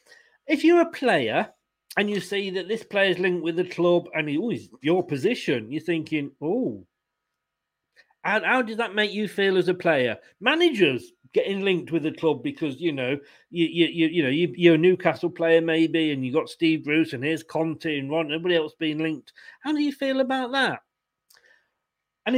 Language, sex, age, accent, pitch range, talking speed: English, male, 40-59, British, 155-225 Hz, 200 wpm